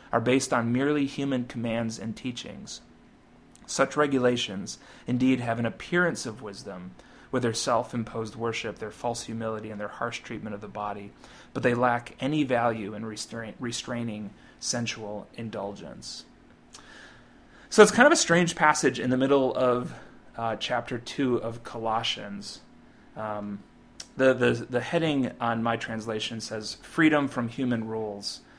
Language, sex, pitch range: English, male, 110-135 Hz